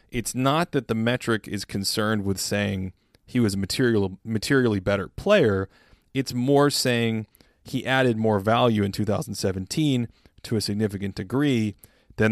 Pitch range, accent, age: 100-125 Hz, American, 30-49